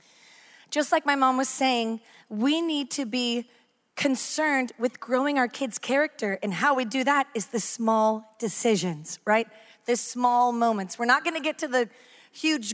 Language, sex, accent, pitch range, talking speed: English, female, American, 215-270 Hz, 175 wpm